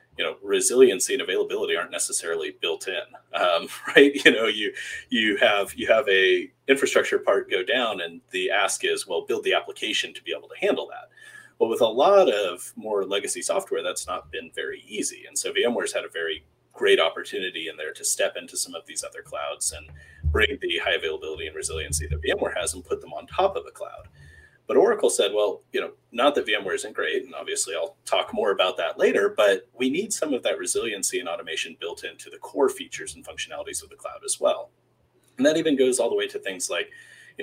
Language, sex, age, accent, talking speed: English, male, 30-49, American, 220 wpm